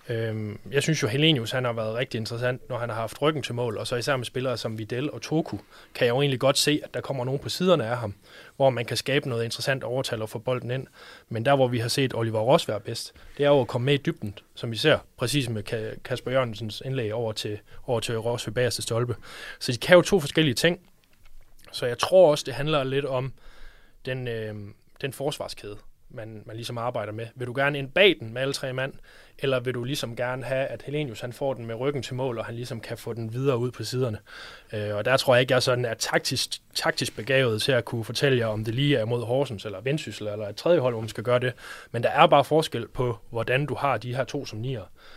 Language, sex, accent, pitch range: Danish, male, native, 110-135 Hz